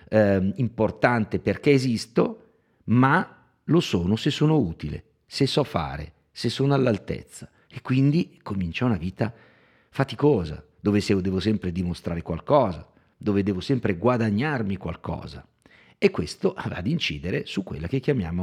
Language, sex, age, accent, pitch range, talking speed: Italian, male, 50-69, native, 95-125 Hz, 135 wpm